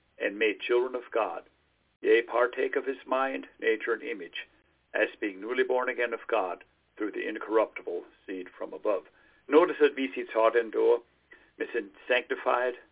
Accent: American